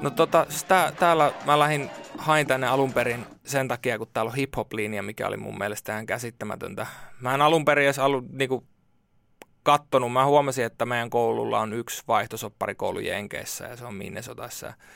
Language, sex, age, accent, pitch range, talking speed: Finnish, male, 20-39, native, 115-135 Hz, 165 wpm